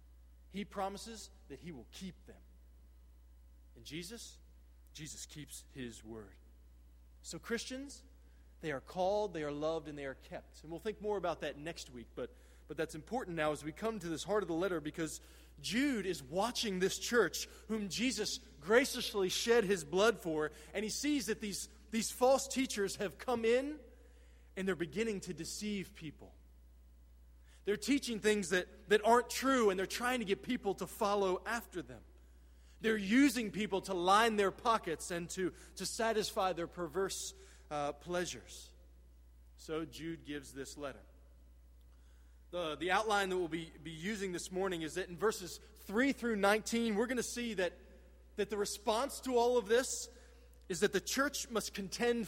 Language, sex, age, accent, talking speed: English, male, 20-39, American, 170 wpm